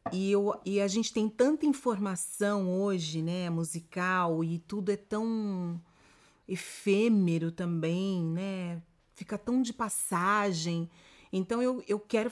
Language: Portuguese